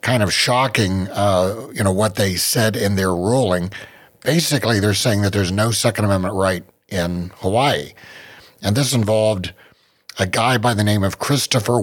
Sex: male